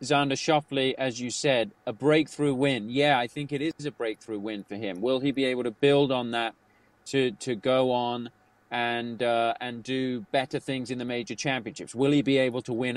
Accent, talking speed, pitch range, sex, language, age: British, 215 wpm, 120-140 Hz, male, English, 30-49